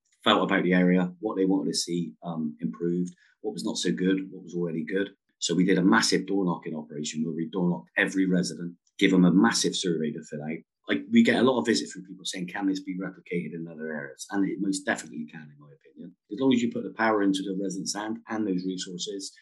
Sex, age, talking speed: male, 30-49, 240 wpm